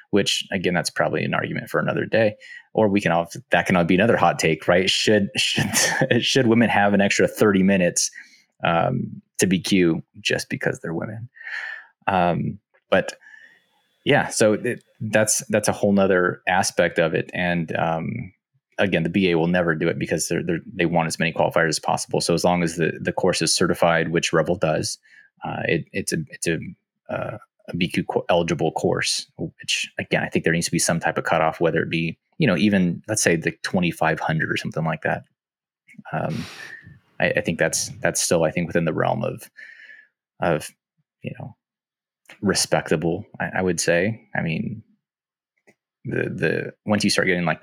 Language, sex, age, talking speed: English, male, 20-39, 185 wpm